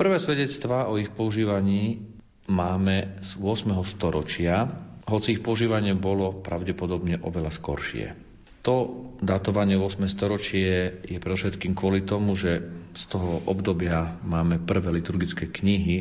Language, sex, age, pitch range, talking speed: Slovak, male, 40-59, 85-105 Hz, 120 wpm